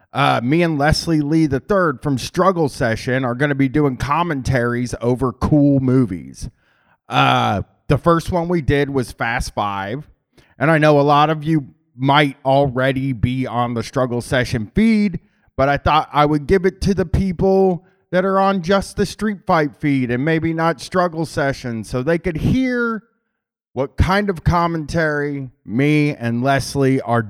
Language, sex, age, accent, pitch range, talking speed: English, male, 30-49, American, 130-175 Hz, 170 wpm